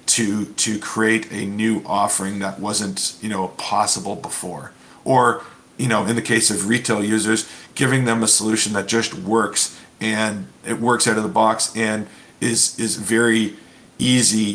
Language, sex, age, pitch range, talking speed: English, male, 40-59, 105-120 Hz, 165 wpm